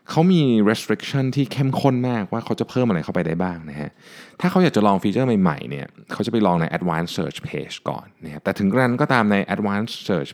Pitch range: 80-125 Hz